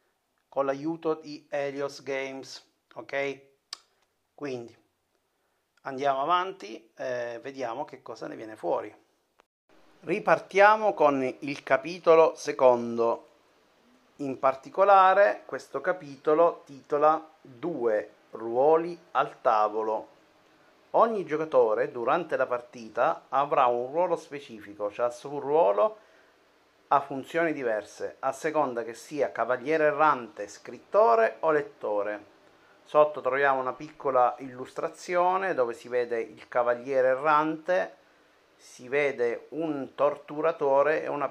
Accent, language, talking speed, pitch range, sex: native, Italian, 105 wpm, 120-155 Hz, male